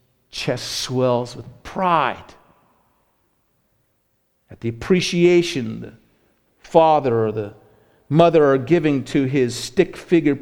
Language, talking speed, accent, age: English, 105 wpm, American, 50-69